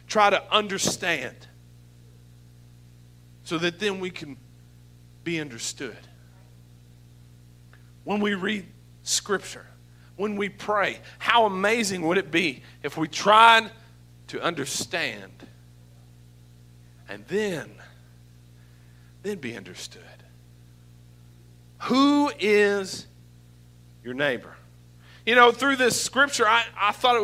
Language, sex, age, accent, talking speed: English, male, 50-69, American, 100 wpm